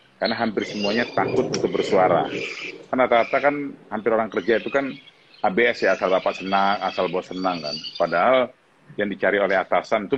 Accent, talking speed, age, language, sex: Indonesian, 170 wpm, 40-59, English, male